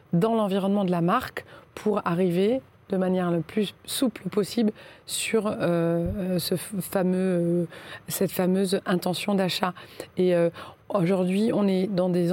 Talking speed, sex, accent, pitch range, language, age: 125 wpm, female, French, 180-205 Hz, French, 30-49